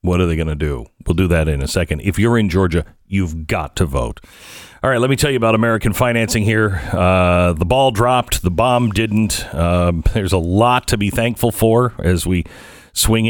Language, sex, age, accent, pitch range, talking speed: English, male, 40-59, American, 85-110 Hz, 215 wpm